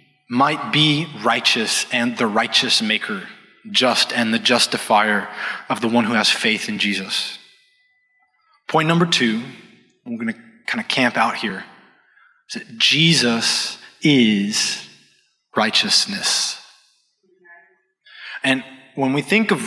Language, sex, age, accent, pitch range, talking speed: English, male, 20-39, American, 130-215 Hz, 120 wpm